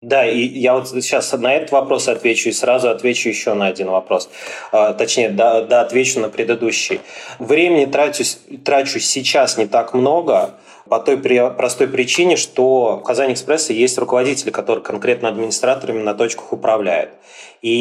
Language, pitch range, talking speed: Russian, 105-130 Hz, 155 wpm